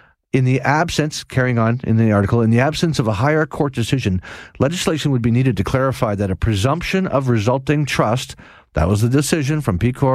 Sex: male